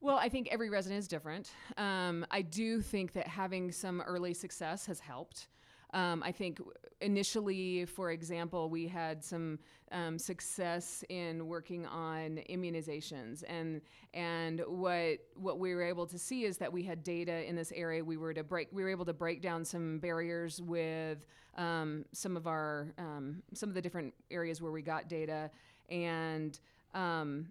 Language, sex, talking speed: English, female, 170 wpm